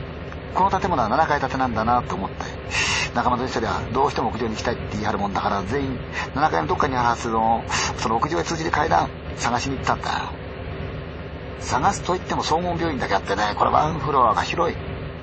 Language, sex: Chinese, male